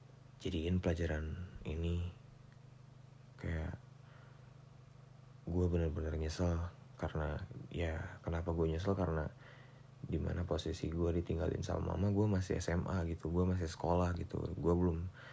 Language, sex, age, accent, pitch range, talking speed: Indonesian, male, 20-39, native, 85-130 Hz, 115 wpm